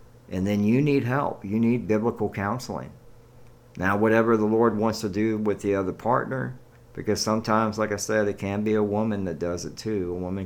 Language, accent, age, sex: English, American, 50-69, male